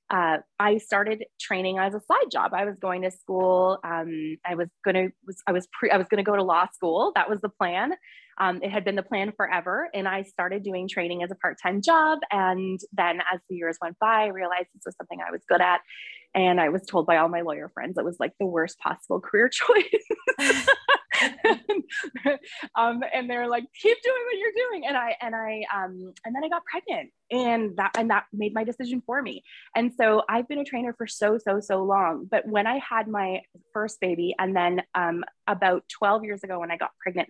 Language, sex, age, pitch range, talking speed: English, female, 20-39, 185-235 Hz, 215 wpm